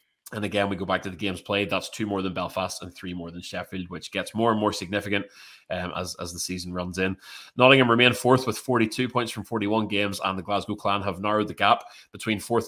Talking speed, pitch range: 240 wpm, 95-110 Hz